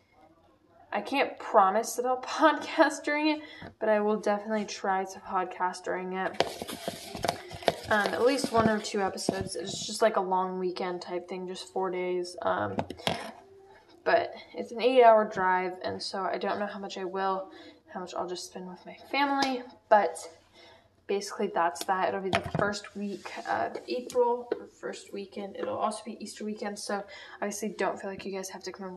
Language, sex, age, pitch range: English, female, 10-29, 185-235 Hz